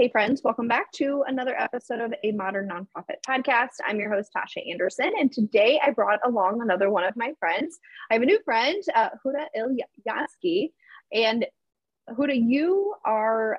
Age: 20-39